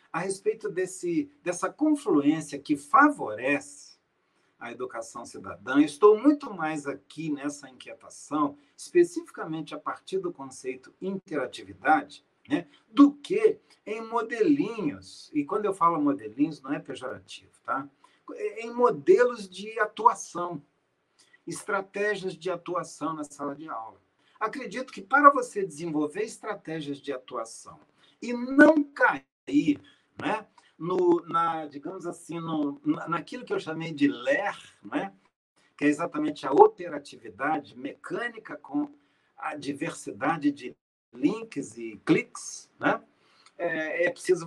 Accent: Brazilian